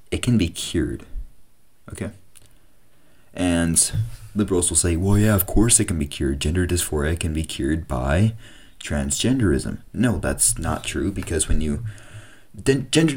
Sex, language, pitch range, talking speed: male, English, 80-110 Hz, 145 wpm